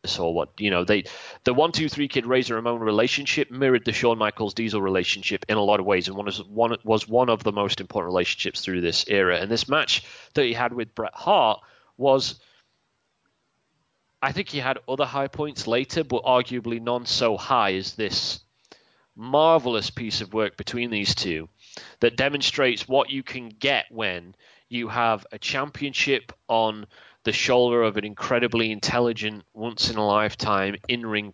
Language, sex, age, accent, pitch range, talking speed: English, male, 30-49, British, 105-130 Hz, 180 wpm